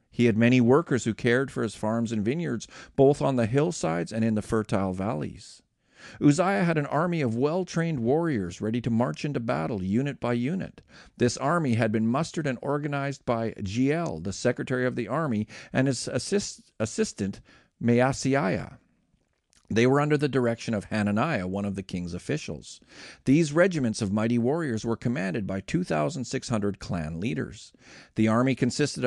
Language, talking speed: English, 165 wpm